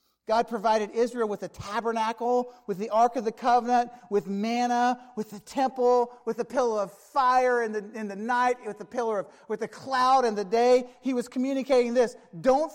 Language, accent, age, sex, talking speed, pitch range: English, American, 40-59, male, 200 wpm, 245-310 Hz